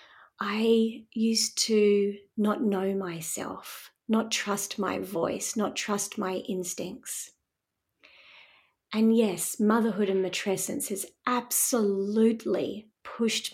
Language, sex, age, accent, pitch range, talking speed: English, female, 30-49, Australian, 190-225 Hz, 100 wpm